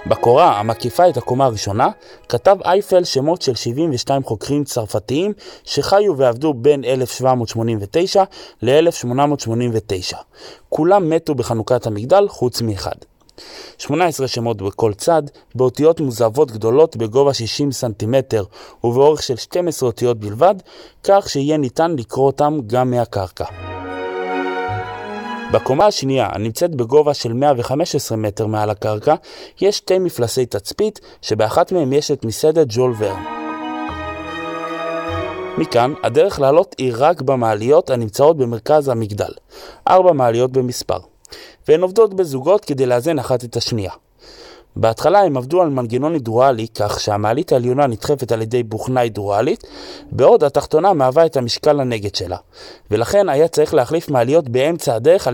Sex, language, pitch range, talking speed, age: male, Hebrew, 115-155 Hz, 120 wpm, 30-49